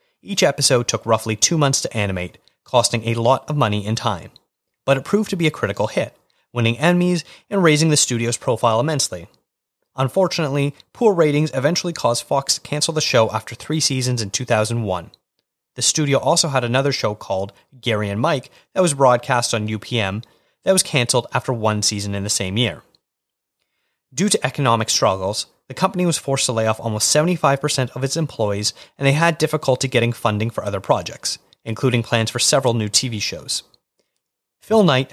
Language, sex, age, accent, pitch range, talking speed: English, male, 30-49, American, 110-155 Hz, 180 wpm